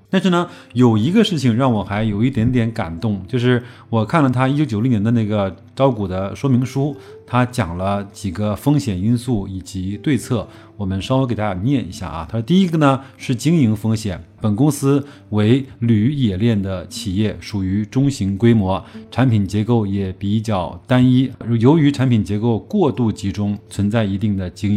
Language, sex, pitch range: Chinese, male, 100-125 Hz